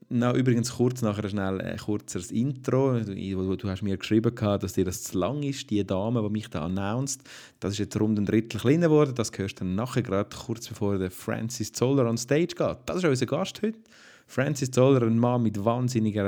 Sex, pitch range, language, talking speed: male, 100-125 Hz, German, 220 wpm